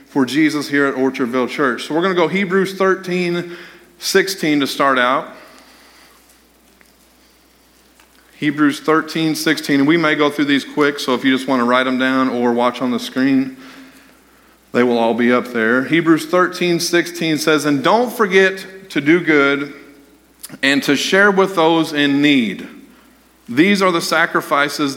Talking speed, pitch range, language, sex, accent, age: 165 wpm, 140-190 Hz, English, male, American, 40-59